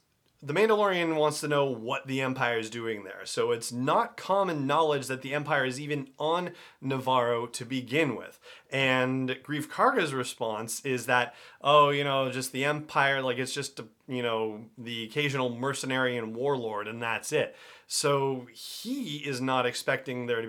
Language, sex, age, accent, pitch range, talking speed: English, male, 30-49, American, 115-140 Hz, 170 wpm